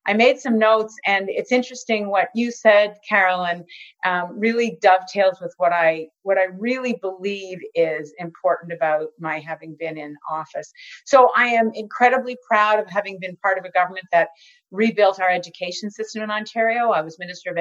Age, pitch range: 40-59, 170-210 Hz